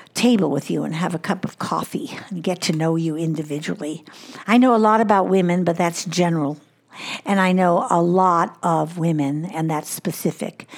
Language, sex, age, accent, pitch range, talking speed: English, female, 60-79, American, 165-195 Hz, 190 wpm